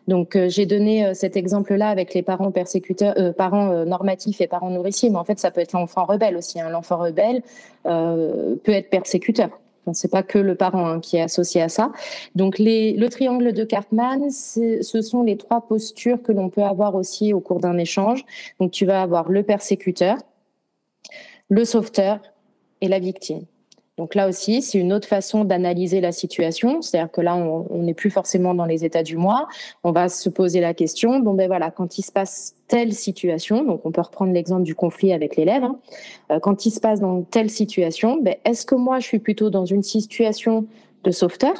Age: 30-49